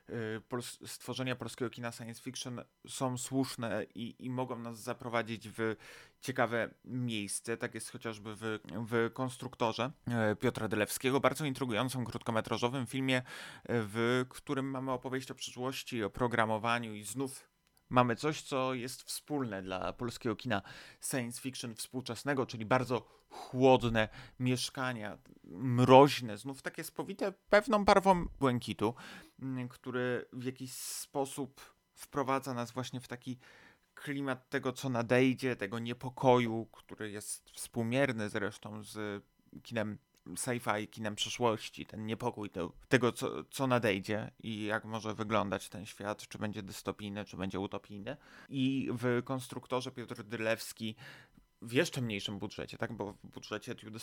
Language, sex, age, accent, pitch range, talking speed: Polish, male, 30-49, native, 110-130 Hz, 130 wpm